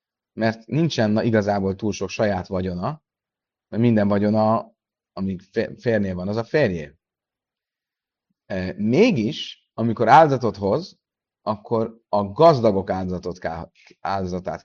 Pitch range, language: 95-140 Hz, Hungarian